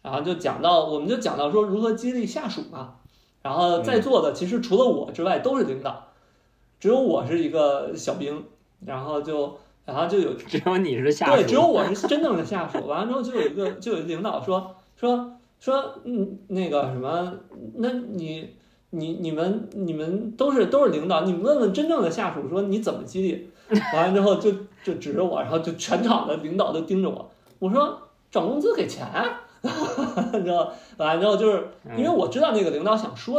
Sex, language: male, Chinese